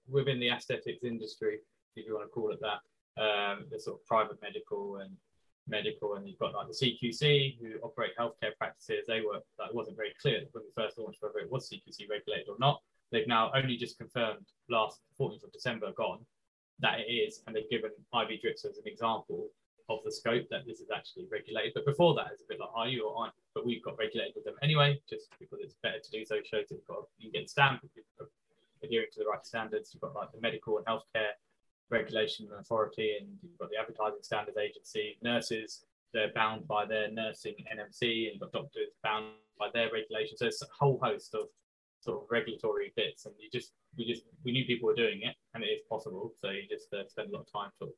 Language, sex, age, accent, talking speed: English, male, 20-39, British, 225 wpm